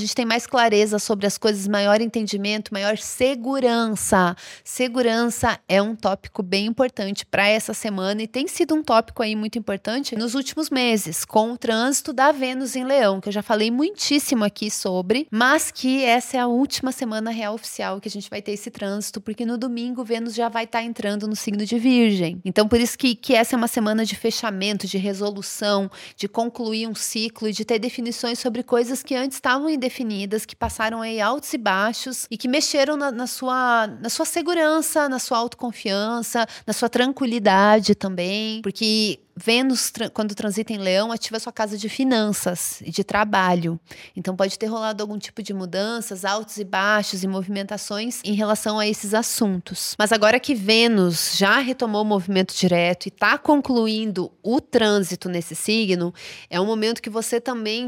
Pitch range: 205-245 Hz